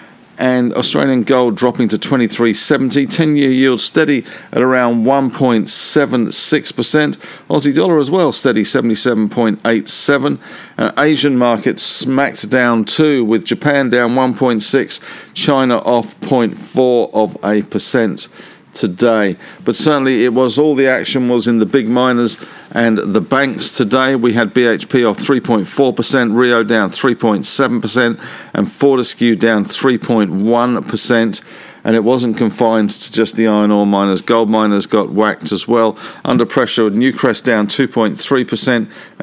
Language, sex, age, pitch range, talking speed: English, male, 50-69, 110-130 Hz, 130 wpm